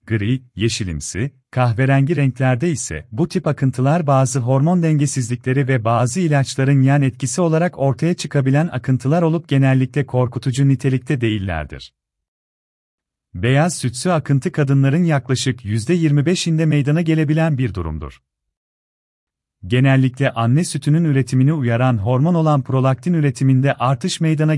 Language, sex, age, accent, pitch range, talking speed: Turkish, male, 40-59, native, 115-150 Hz, 110 wpm